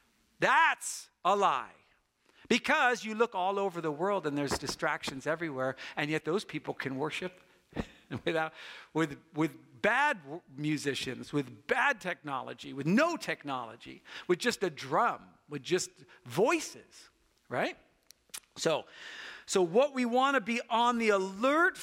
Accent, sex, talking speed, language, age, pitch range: American, male, 135 wpm, English, 50-69, 160-235 Hz